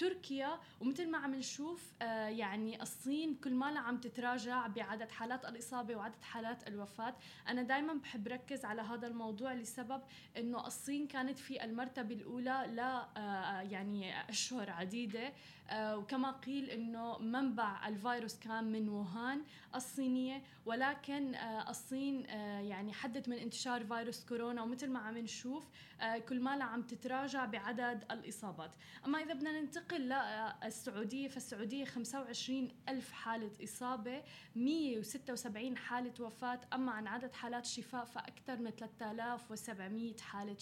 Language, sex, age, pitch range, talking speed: Arabic, female, 20-39, 225-265 Hz, 125 wpm